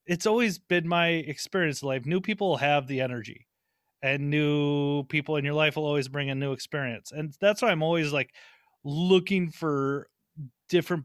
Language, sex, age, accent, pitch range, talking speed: English, male, 30-49, American, 145-190 Hz, 180 wpm